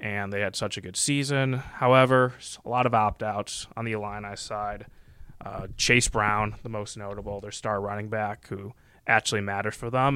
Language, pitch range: English, 105-115 Hz